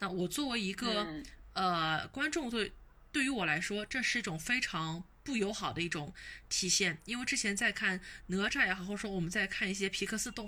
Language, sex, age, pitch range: Chinese, female, 20-39, 180-240 Hz